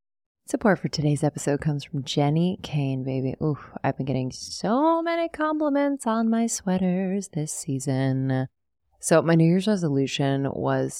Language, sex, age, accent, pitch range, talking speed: English, female, 20-39, American, 135-180 Hz, 145 wpm